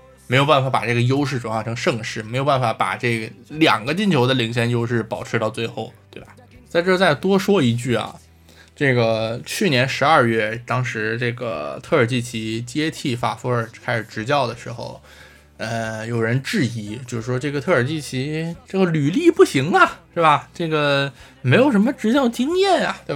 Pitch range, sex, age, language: 115-150 Hz, male, 20-39, Chinese